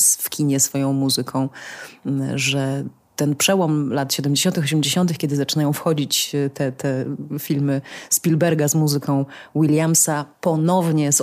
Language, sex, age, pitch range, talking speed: Polish, female, 30-49, 140-180 Hz, 120 wpm